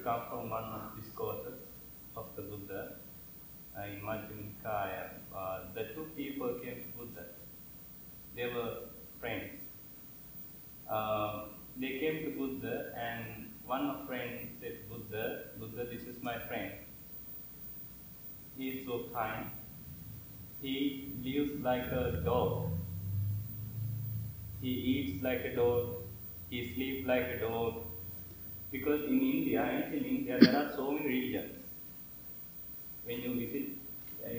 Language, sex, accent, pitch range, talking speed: English, male, Indian, 115-145 Hz, 120 wpm